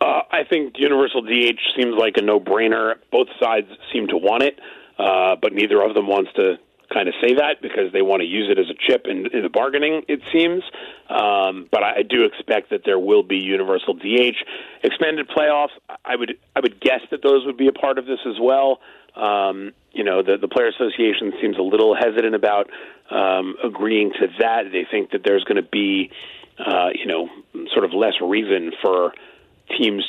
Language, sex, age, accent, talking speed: English, male, 40-59, American, 205 wpm